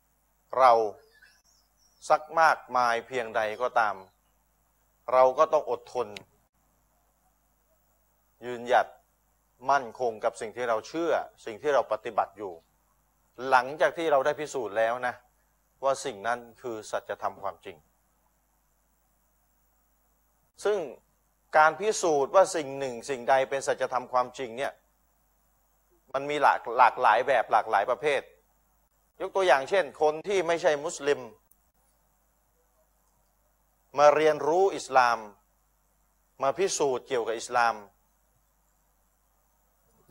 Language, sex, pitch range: Thai, male, 125-160 Hz